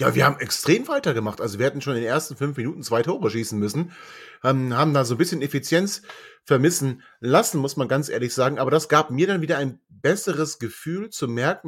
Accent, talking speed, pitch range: German, 220 wpm, 130-160 Hz